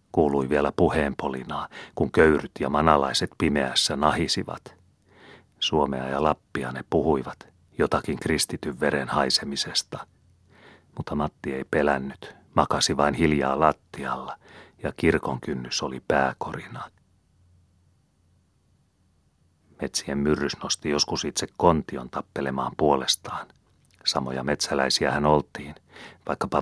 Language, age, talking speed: Finnish, 40-59, 95 wpm